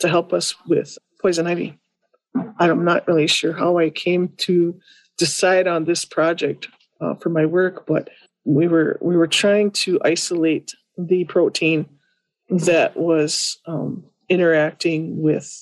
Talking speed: 140 wpm